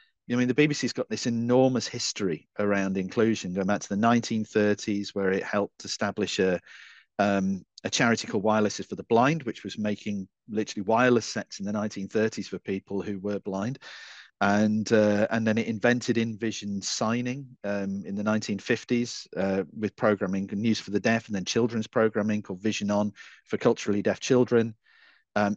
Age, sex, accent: 40-59, male, British